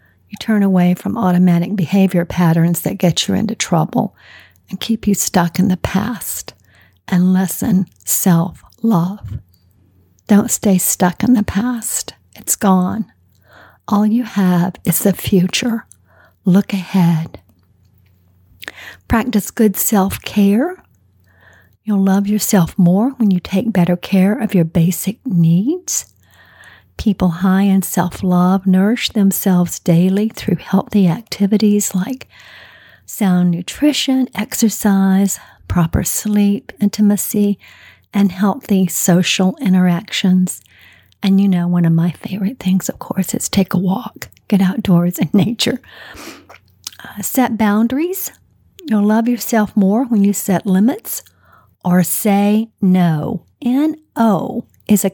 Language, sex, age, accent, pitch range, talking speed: English, female, 50-69, American, 175-210 Hz, 120 wpm